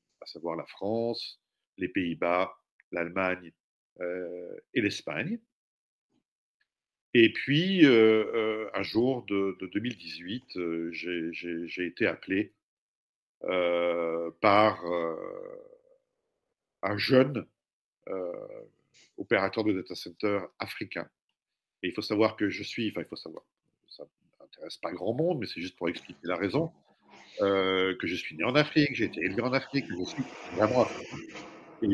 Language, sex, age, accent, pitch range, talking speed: French, male, 50-69, French, 95-130 Hz, 145 wpm